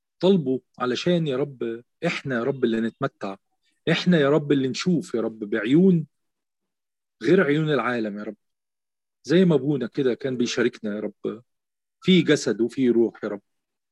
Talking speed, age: 155 wpm, 40-59